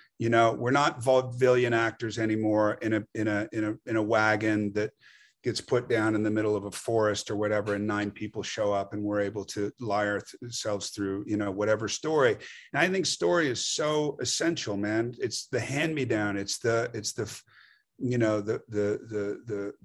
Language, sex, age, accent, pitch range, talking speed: English, male, 40-59, American, 105-125 Hz, 200 wpm